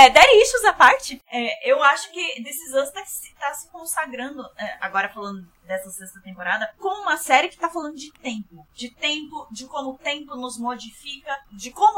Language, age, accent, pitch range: Portuguese, 20-39, Brazilian, 230-285 Hz